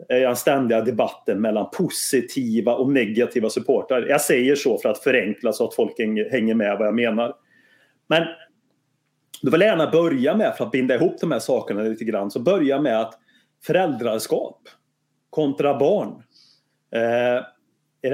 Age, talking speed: 30-49, 150 wpm